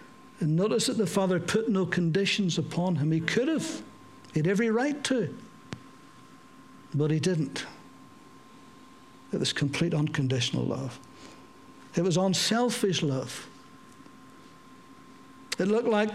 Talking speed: 125 wpm